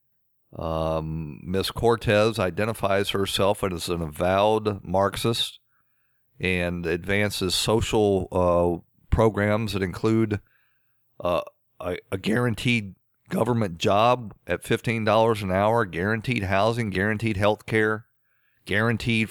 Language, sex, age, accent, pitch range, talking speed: English, male, 50-69, American, 95-120 Hz, 105 wpm